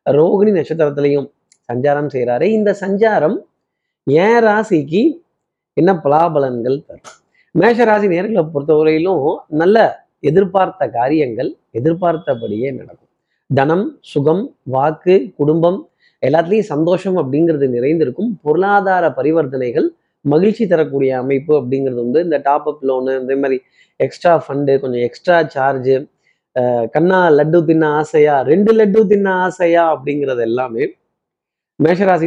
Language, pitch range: Tamil, 135-180 Hz